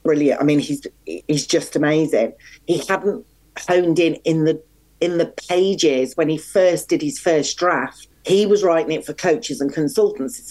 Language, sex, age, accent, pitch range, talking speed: English, female, 40-59, British, 150-190 Hz, 185 wpm